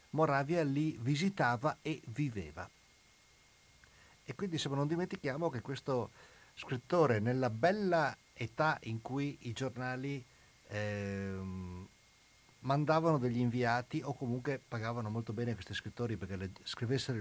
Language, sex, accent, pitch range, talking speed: Italian, male, native, 105-140 Hz, 120 wpm